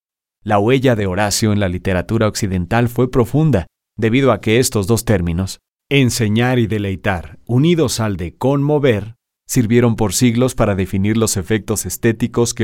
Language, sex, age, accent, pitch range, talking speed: Spanish, male, 30-49, Mexican, 100-120 Hz, 150 wpm